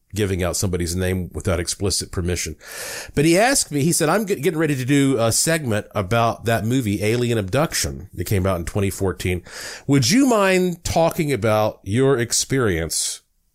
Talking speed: 165 wpm